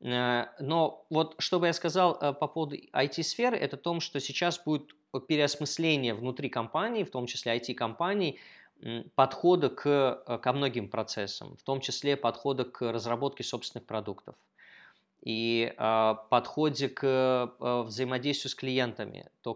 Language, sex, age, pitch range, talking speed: Russian, male, 20-39, 120-150 Hz, 125 wpm